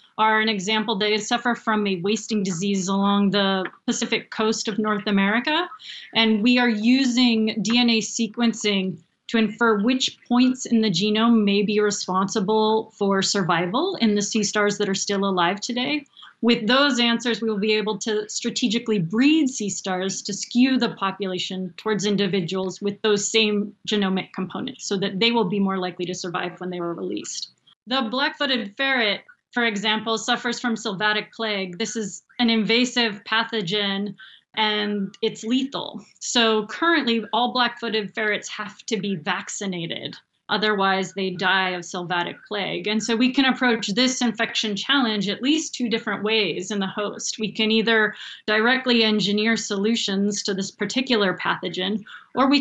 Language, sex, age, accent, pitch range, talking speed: English, female, 30-49, American, 200-235 Hz, 160 wpm